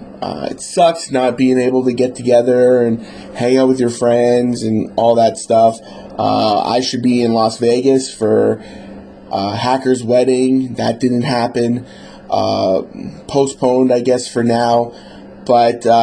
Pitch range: 120-145 Hz